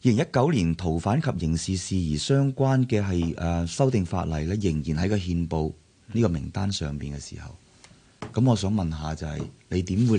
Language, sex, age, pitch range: Chinese, male, 30-49, 85-120 Hz